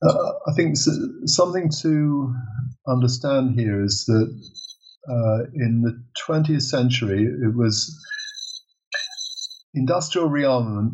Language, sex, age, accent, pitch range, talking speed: English, male, 50-69, British, 115-155 Hz, 100 wpm